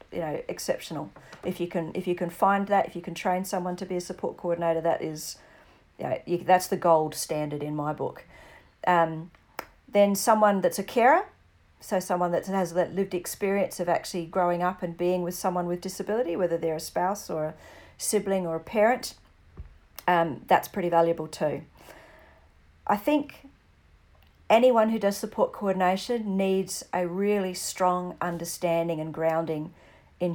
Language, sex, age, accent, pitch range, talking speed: English, female, 40-59, Australian, 165-200 Hz, 170 wpm